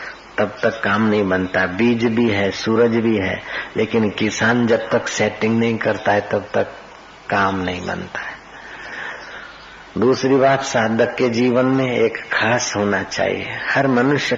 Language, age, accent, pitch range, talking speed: Hindi, 50-69, native, 105-125 Hz, 155 wpm